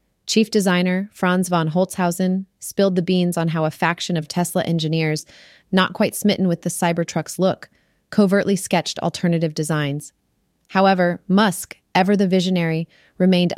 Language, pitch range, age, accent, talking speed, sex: English, 155-185 Hz, 20-39, American, 140 wpm, female